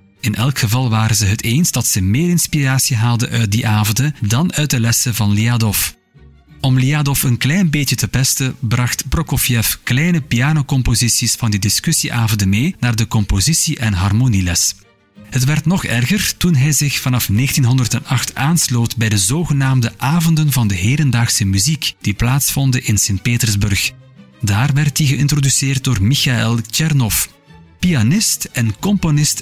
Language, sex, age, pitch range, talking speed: Dutch, male, 40-59, 110-145 Hz, 150 wpm